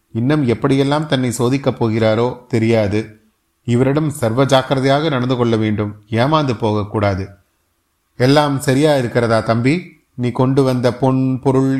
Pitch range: 110-145 Hz